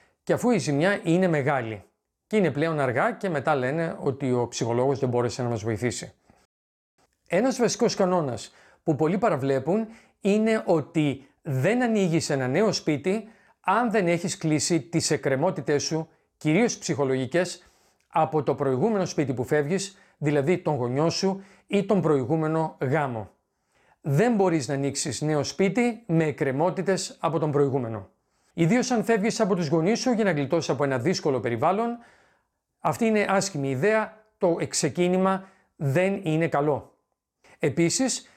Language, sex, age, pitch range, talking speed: Greek, male, 40-59, 140-195 Hz, 145 wpm